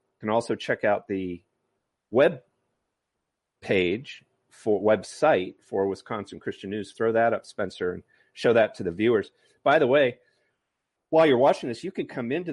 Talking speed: 165 wpm